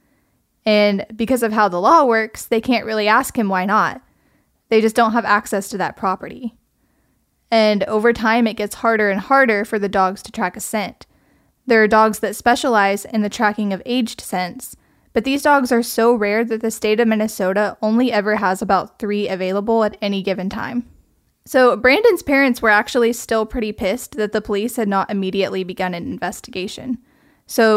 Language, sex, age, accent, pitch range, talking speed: English, female, 10-29, American, 200-240 Hz, 190 wpm